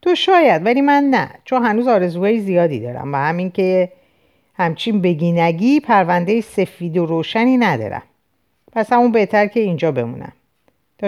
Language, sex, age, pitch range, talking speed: Persian, female, 50-69, 165-235 Hz, 145 wpm